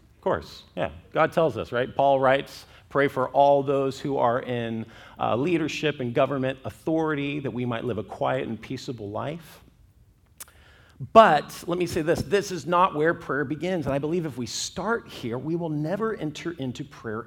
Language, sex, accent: English, male, American